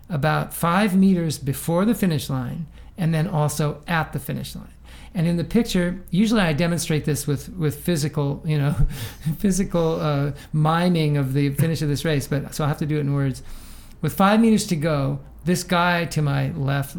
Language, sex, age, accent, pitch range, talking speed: English, male, 50-69, American, 145-180 Hz, 195 wpm